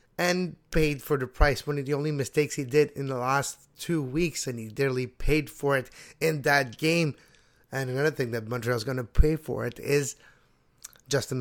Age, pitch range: 30-49, 125-160 Hz